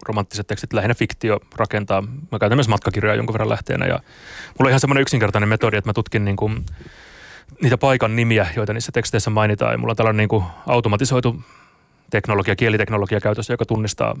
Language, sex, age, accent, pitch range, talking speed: Finnish, male, 30-49, native, 105-120 Hz, 175 wpm